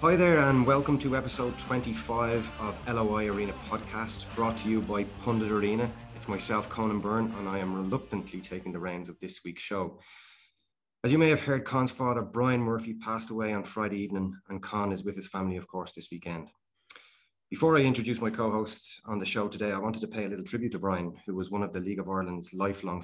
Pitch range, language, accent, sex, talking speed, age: 95-115 Hz, English, Irish, male, 215 wpm, 30-49